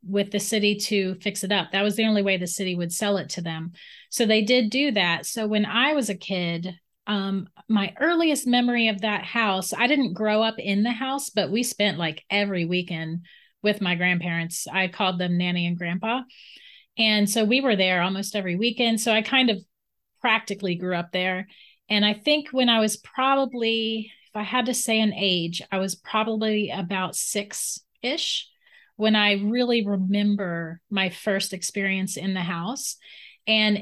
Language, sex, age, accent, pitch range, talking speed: English, female, 30-49, American, 190-230 Hz, 185 wpm